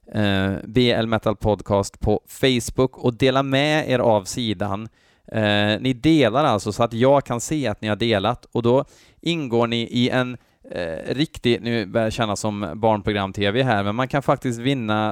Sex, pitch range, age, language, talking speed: male, 105-130 Hz, 20-39, Swedish, 180 wpm